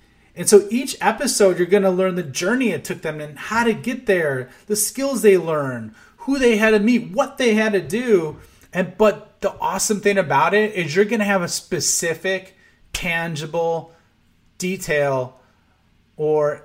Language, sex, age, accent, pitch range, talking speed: English, male, 30-49, American, 150-205 Hz, 175 wpm